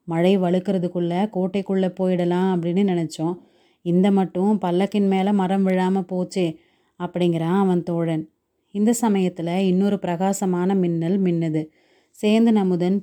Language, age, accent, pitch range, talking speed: Tamil, 30-49, native, 175-200 Hz, 110 wpm